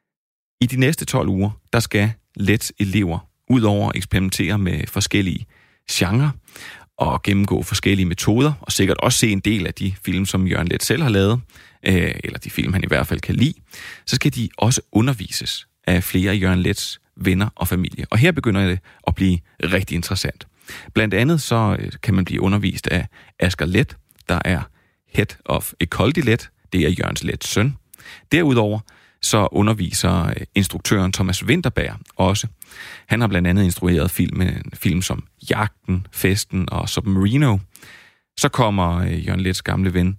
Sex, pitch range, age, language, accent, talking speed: male, 90-110 Hz, 30-49, Danish, native, 165 wpm